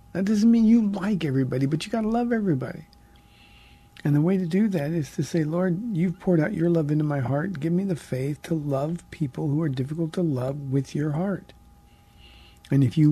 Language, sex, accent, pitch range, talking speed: English, male, American, 130-170 Hz, 220 wpm